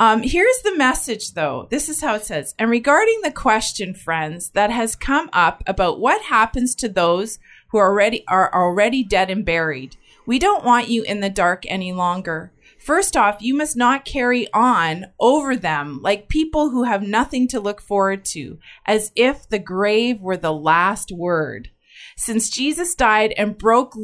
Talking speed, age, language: 175 wpm, 30-49, English